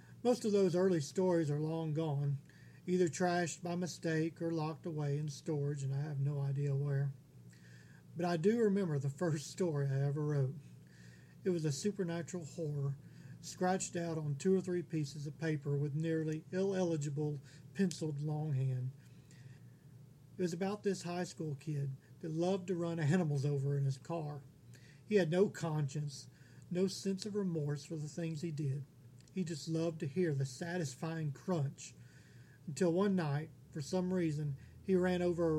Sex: male